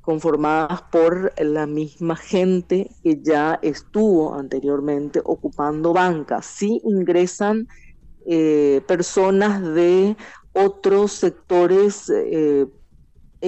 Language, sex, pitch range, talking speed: Spanish, female, 145-170 Hz, 85 wpm